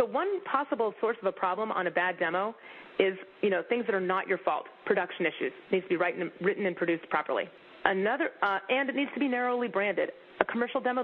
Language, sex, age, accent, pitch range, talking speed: English, female, 30-49, American, 175-230 Hz, 230 wpm